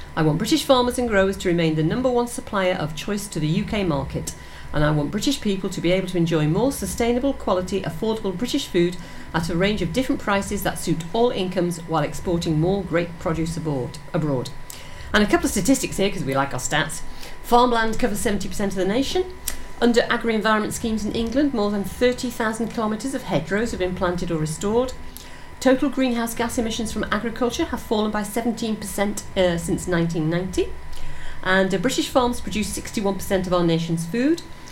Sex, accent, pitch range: female, British, 170-235 Hz